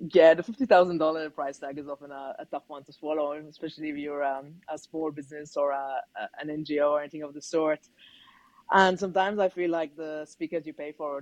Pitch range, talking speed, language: 150-195 Hz, 225 wpm, English